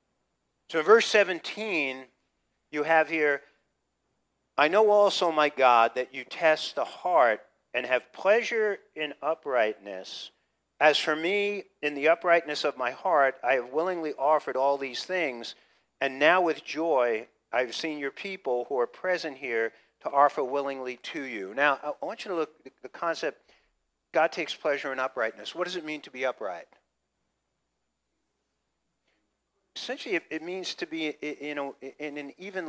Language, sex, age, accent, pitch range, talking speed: English, male, 50-69, American, 130-160 Hz, 160 wpm